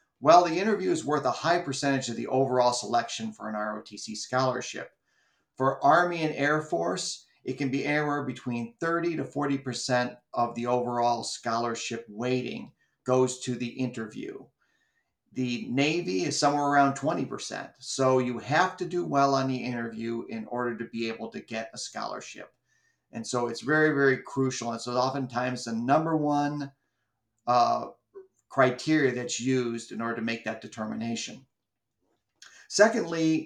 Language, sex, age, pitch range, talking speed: English, male, 50-69, 120-145 Hz, 150 wpm